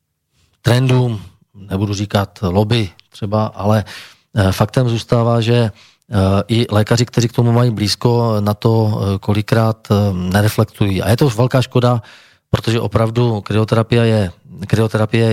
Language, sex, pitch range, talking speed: Slovak, male, 100-115 Hz, 115 wpm